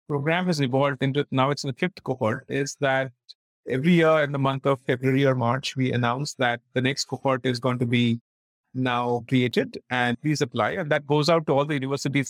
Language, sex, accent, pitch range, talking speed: English, male, Indian, 130-170 Hz, 215 wpm